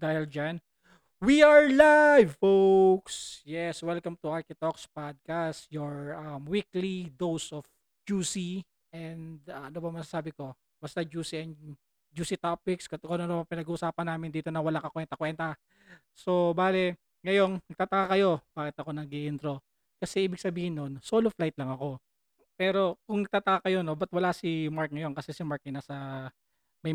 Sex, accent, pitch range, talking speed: male, Filipino, 150-180 Hz, 160 wpm